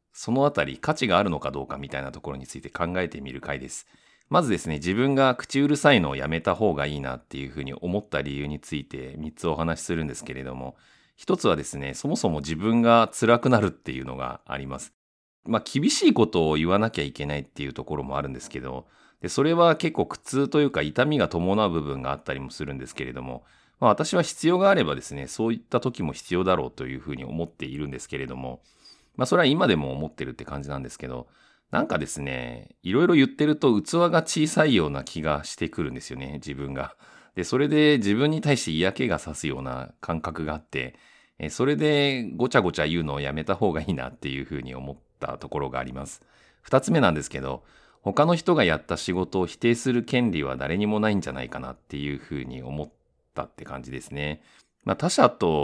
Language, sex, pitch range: Japanese, male, 70-110 Hz